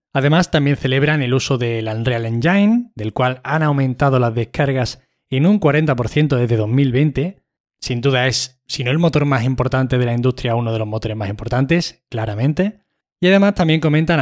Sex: male